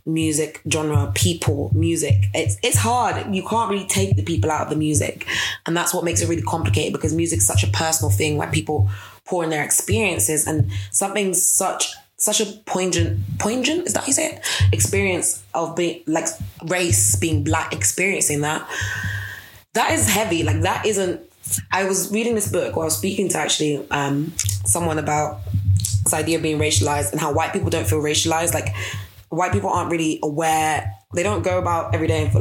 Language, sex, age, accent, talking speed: English, female, 20-39, British, 190 wpm